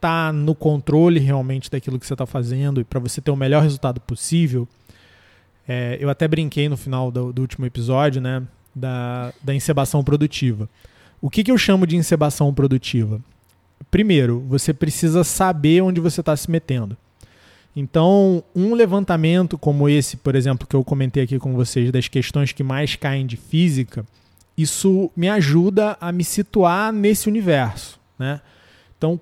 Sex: male